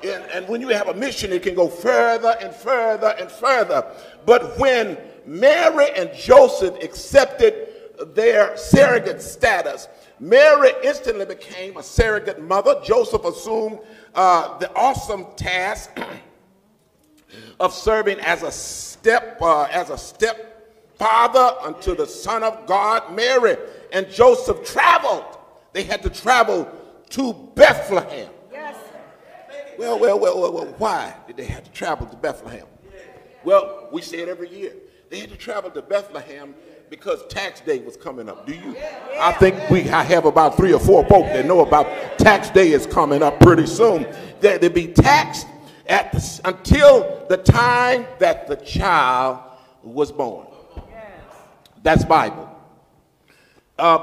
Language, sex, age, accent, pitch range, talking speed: English, male, 50-69, American, 190-300 Hz, 140 wpm